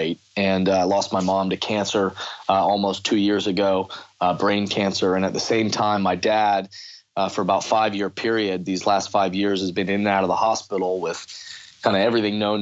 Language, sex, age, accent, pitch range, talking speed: English, male, 30-49, American, 100-130 Hz, 210 wpm